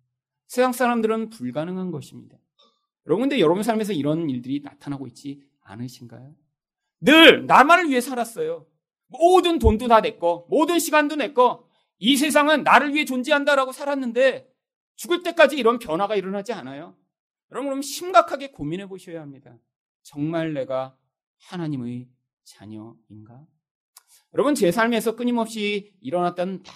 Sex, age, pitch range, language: male, 40-59, 150-255 Hz, Korean